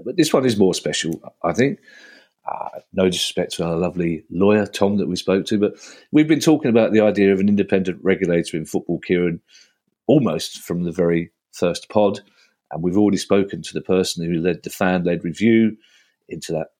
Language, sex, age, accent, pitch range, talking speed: English, male, 40-59, British, 85-110 Hz, 195 wpm